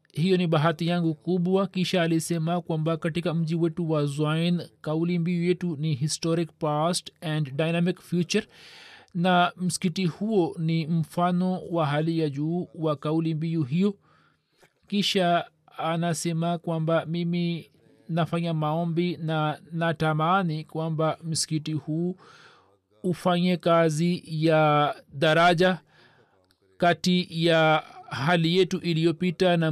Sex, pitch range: male, 155-175 Hz